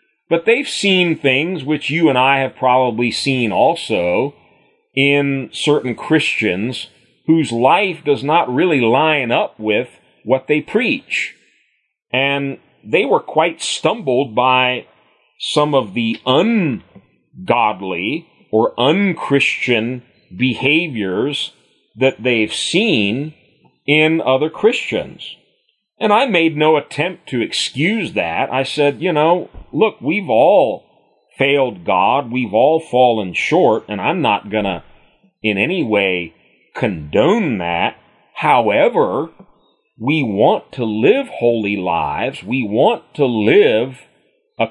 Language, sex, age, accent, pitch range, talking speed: English, male, 40-59, American, 115-155 Hz, 120 wpm